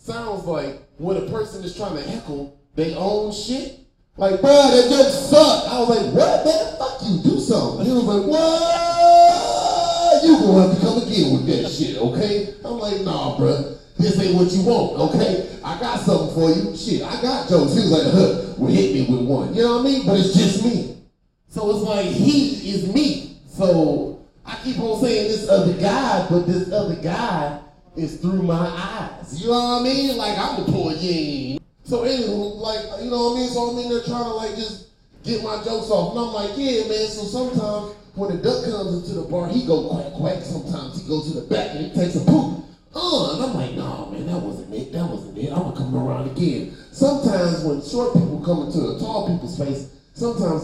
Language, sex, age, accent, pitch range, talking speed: English, male, 30-49, American, 165-235 Hz, 225 wpm